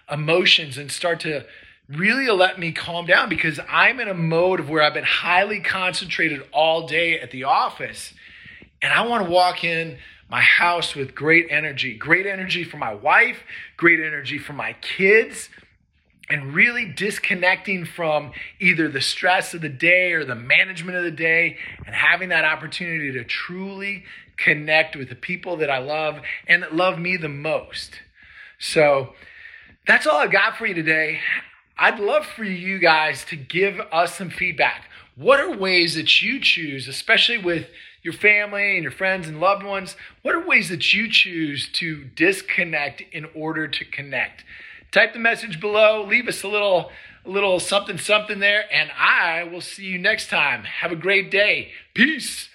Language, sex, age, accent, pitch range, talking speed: English, male, 30-49, American, 155-200 Hz, 175 wpm